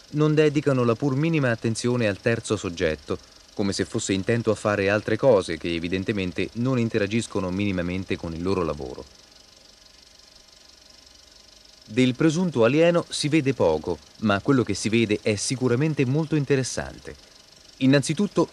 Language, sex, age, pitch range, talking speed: Italian, male, 30-49, 105-135 Hz, 135 wpm